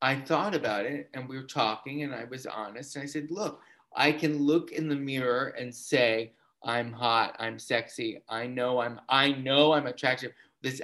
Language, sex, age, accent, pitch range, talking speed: English, male, 30-49, American, 120-145 Hz, 200 wpm